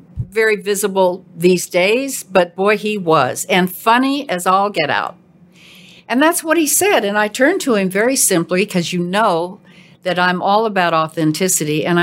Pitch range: 175-215 Hz